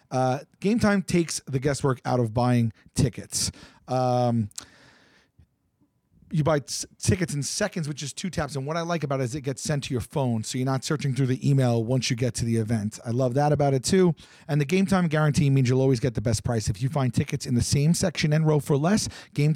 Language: English